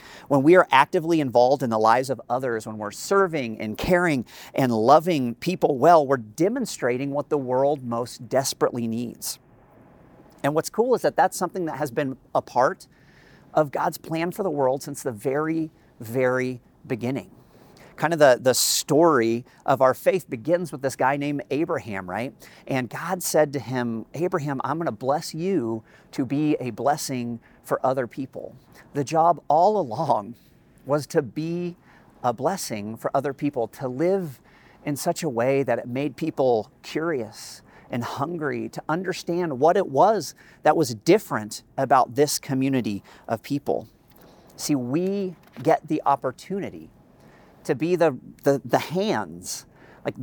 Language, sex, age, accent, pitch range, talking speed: English, male, 50-69, American, 125-165 Hz, 155 wpm